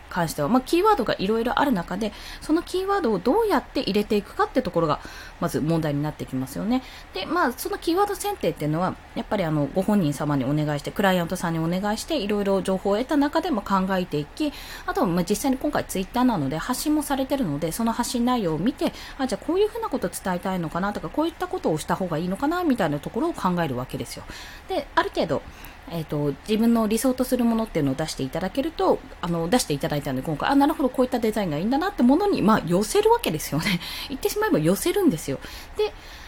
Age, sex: 20-39, female